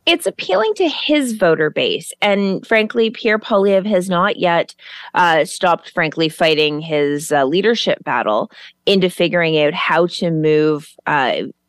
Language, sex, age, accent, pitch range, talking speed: English, female, 30-49, American, 145-180 Hz, 145 wpm